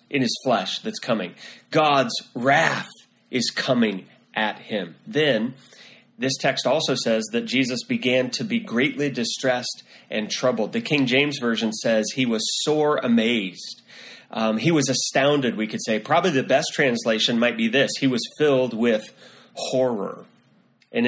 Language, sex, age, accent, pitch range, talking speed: English, male, 30-49, American, 120-150 Hz, 155 wpm